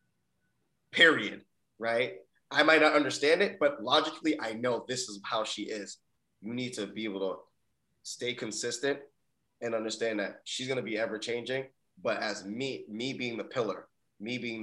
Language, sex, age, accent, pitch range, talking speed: English, male, 20-39, American, 100-115 Hz, 170 wpm